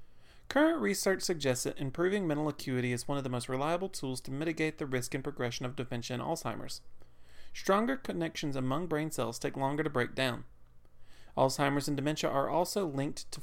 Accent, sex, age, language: American, male, 30-49, English